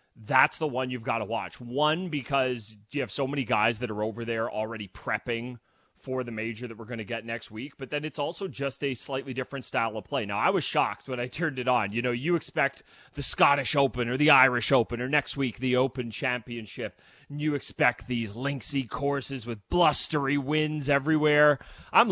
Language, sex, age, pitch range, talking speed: English, male, 30-49, 115-145 Hz, 210 wpm